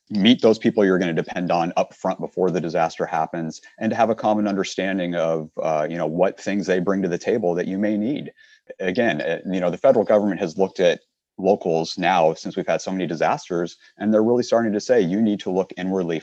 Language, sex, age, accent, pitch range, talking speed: English, male, 30-49, American, 80-105 Hz, 235 wpm